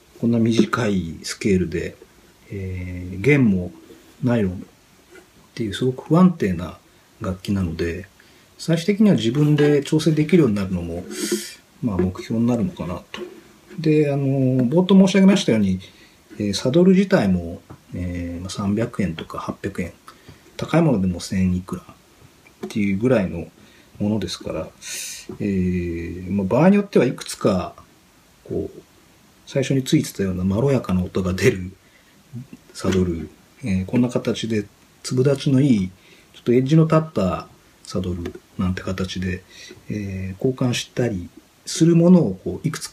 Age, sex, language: 40-59, male, Japanese